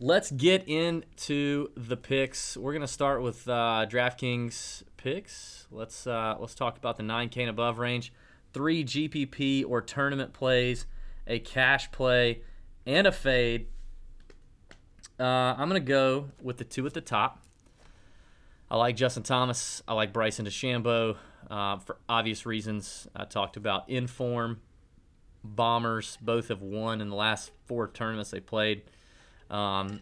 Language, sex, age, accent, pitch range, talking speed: English, male, 30-49, American, 100-125 Hz, 145 wpm